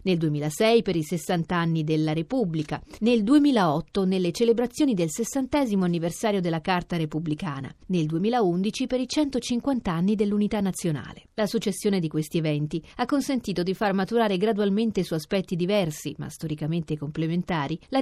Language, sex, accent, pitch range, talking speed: Italian, female, native, 170-220 Hz, 145 wpm